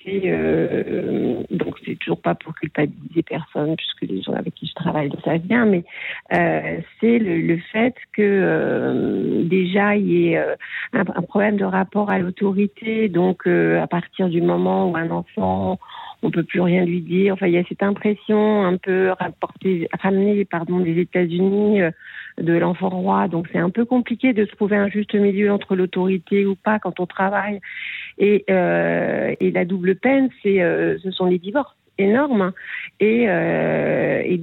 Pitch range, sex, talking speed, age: 175-200 Hz, female, 180 wpm, 50-69